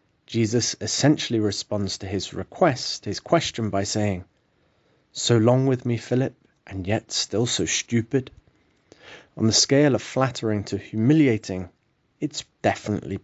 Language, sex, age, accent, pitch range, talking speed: English, male, 30-49, British, 100-125 Hz, 130 wpm